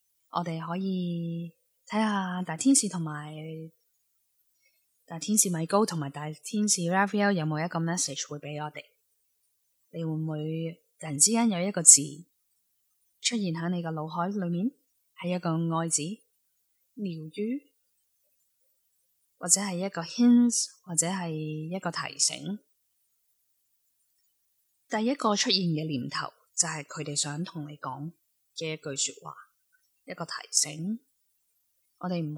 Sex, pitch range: female, 150-195 Hz